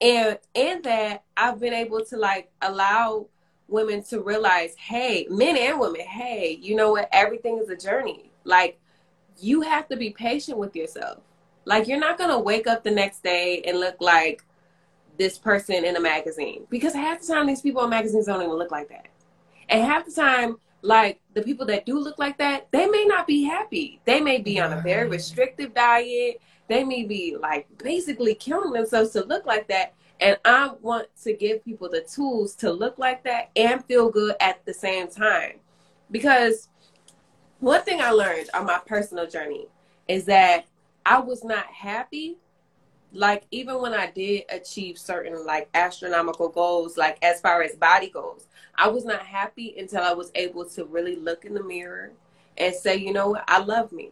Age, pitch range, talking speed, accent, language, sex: 20-39, 180-245 Hz, 190 wpm, American, English, female